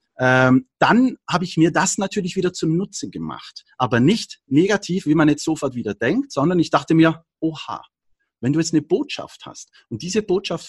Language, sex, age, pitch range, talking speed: German, male, 40-59, 150-210 Hz, 185 wpm